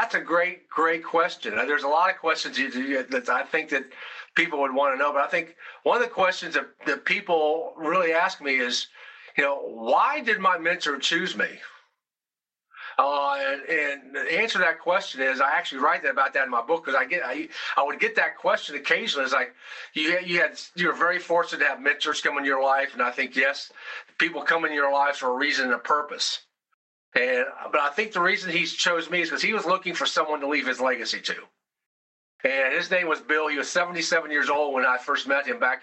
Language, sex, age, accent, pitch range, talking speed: English, male, 40-59, American, 145-185 Hz, 230 wpm